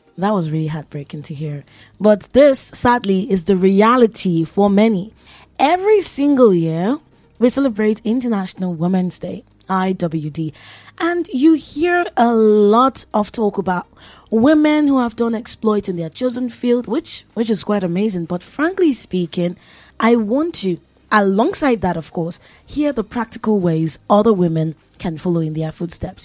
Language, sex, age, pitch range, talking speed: English, female, 20-39, 175-240 Hz, 150 wpm